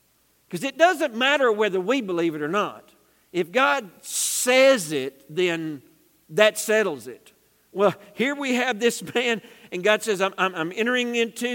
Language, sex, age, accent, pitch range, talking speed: English, male, 50-69, American, 175-235 Hz, 165 wpm